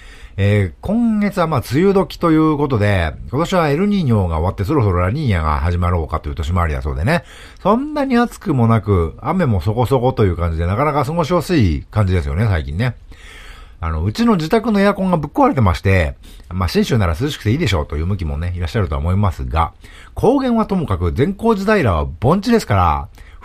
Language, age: Japanese, 50-69